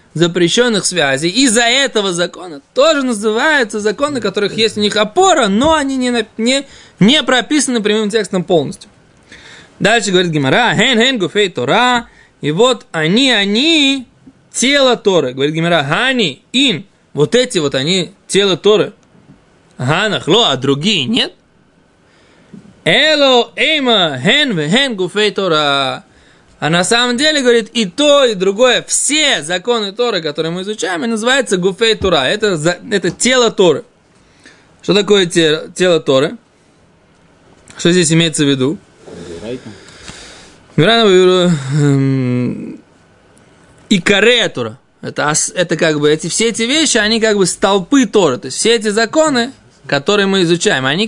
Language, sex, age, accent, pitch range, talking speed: Russian, male, 20-39, native, 170-240 Hz, 130 wpm